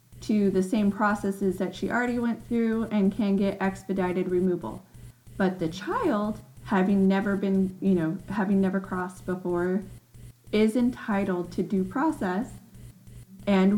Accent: American